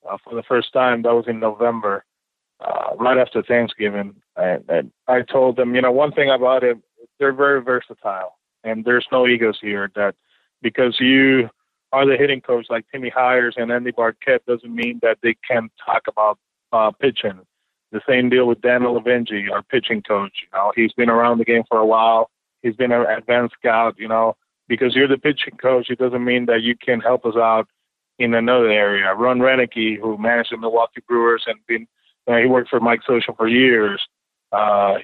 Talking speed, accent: 200 wpm, American